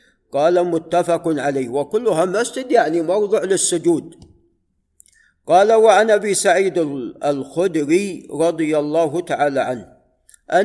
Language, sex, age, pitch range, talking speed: Arabic, male, 50-69, 150-185 Hz, 95 wpm